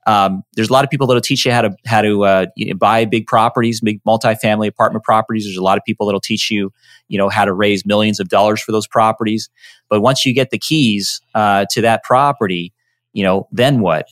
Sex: male